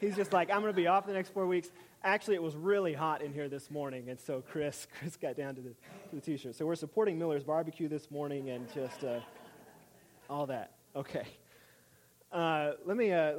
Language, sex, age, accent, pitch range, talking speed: English, male, 30-49, American, 120-150 Hz, 220 wpm